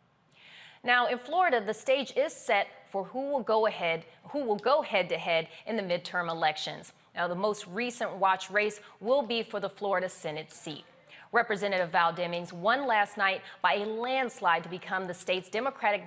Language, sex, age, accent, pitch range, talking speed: English, female, 30-49, American, 175-230 Hz, 180 wpm